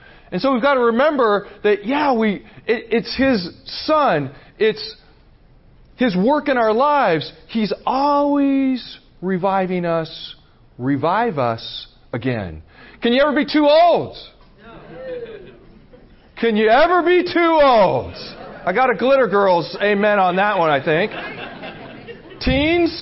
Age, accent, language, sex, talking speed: 40-59, American, English, male, 130 wpm